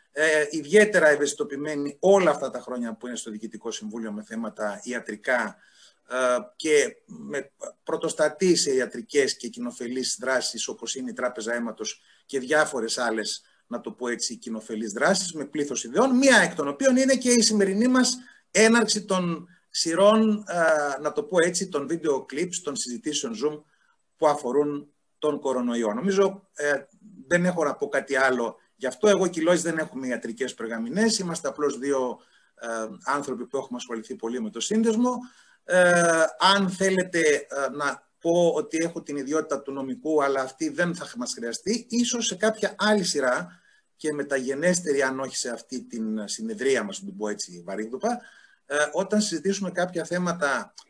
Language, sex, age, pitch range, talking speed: Greek, male, 30-49, 130-200 Hz, 155 wpm